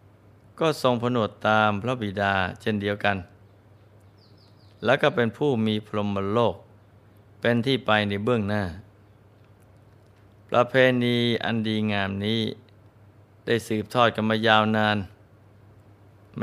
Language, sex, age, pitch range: Thai, male, 20-39, 100-115 Hz